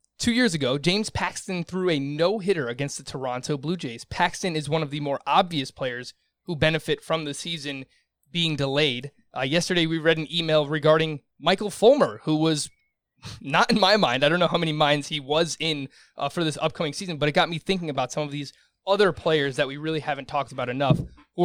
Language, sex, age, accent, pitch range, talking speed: English, male, 20-39, American, 145-175 Hz, 215 wpm